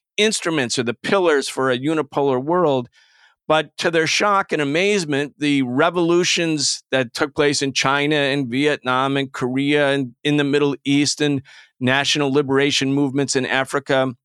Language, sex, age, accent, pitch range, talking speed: English, male, 50-69, American, 130-160 Hz, 150 wpm